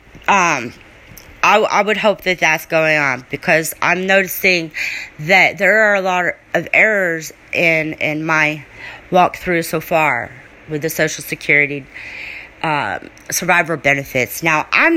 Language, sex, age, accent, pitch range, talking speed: English, female, 40-59, American, 145-185 Hz, 140 wpm